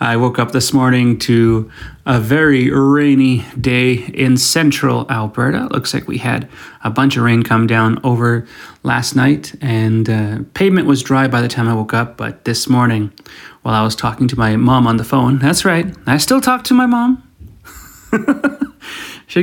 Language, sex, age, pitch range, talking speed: English, male, 30-49, 115-140 Hz, 180 wpm